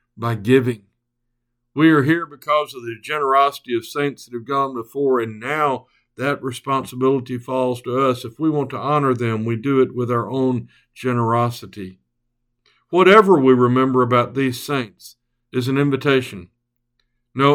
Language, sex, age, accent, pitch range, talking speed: English, male, 60-79, American, 120-150 Hz, 155 wpm